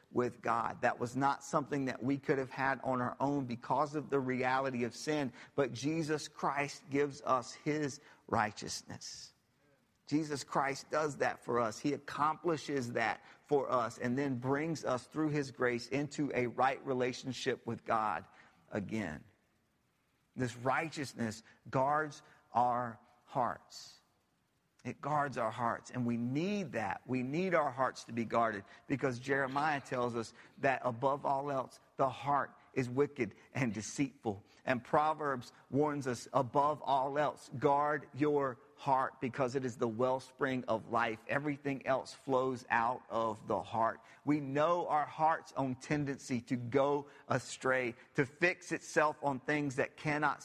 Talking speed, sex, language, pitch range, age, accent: 150 wpm, male, English, 125-145 Hz, 50-69, American